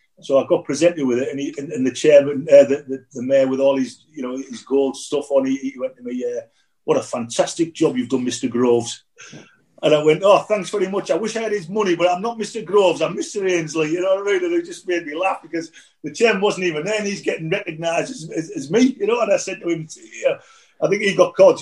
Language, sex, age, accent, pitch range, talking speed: English, male, 40-59, British, 135-190 Hz, 280 wpm